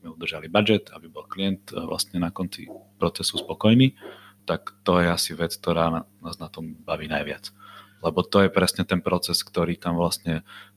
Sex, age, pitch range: male, 30-49, 85-100 Hz